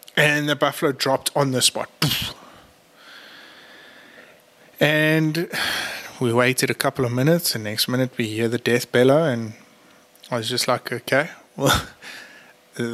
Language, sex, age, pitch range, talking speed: English, male, 20-39, 125-155 Hz, 140 wpm